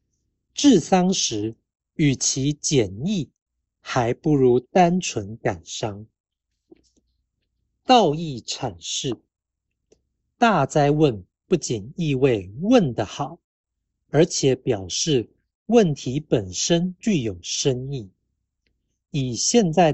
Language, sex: Chinese, male